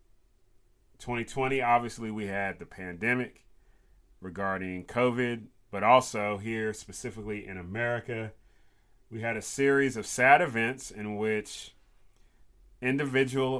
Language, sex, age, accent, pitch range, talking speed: English, male, 30-49, American, 95-115 Hz, 105 wpm